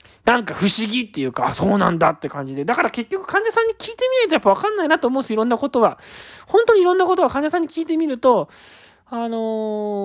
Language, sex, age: Japanese, male, 20-39